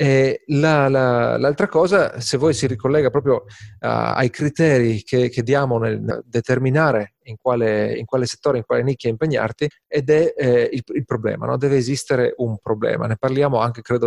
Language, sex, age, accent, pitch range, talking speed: Italian, male, 40-59, native, 120-150 Hz, 180 wpm